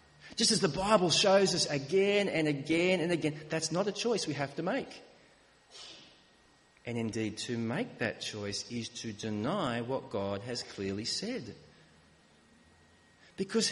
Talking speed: 150 wpm